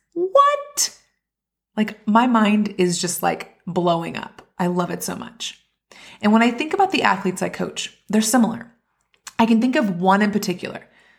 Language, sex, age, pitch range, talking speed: English, female, 30-49, 185-235 Hz, 170 wpm